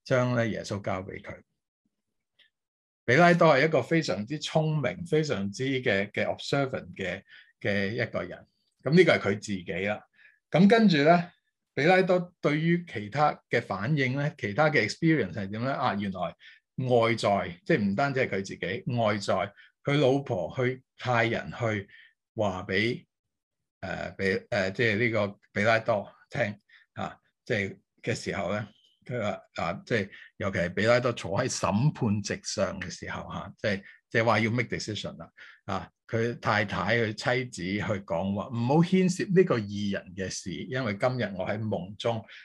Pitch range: 105-155 Hz